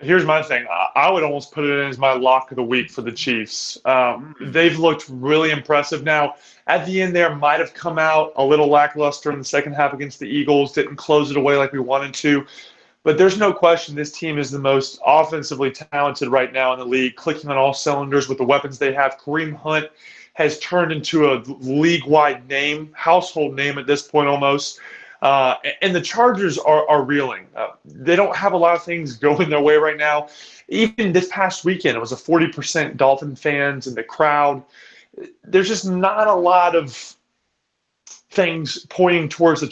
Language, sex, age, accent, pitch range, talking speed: English, male, 30-49, American, 140-165 Hz, 200 wpm